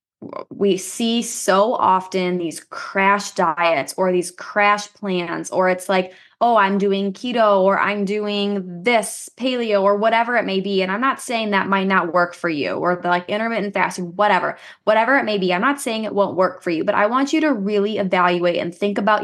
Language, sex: English, female